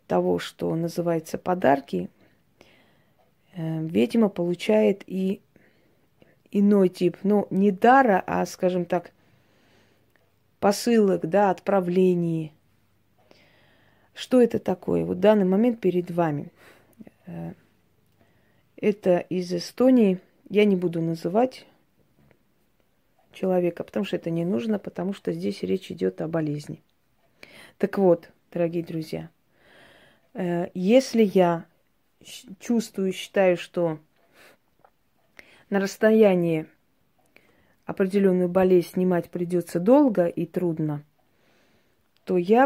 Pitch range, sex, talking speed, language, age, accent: 160-195 Hz, female, 95 wpm, Russian, 30-49, native